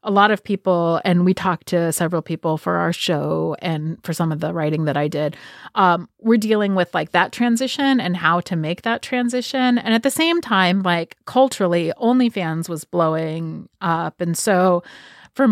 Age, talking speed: 30-49, 190 wpm